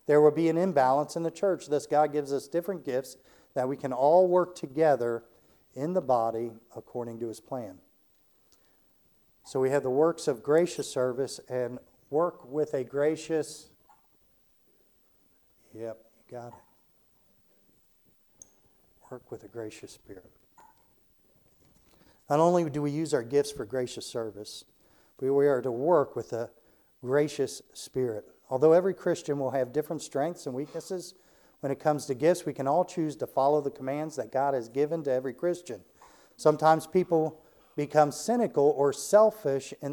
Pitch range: 130-165 Hz